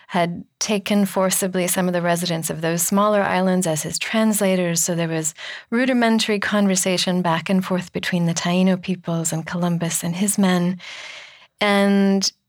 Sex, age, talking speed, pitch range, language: female, 30-49, 155 wpm, 170-205 Hz, English